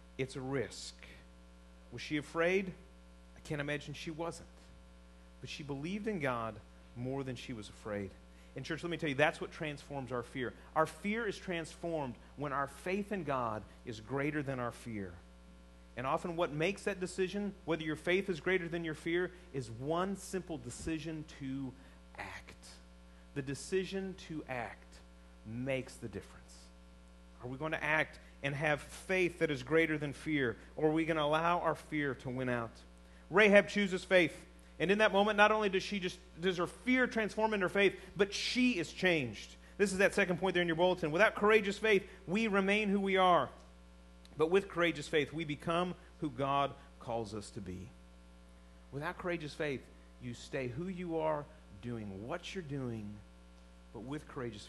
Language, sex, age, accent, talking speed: English, male, 40-59, American, 180 wpm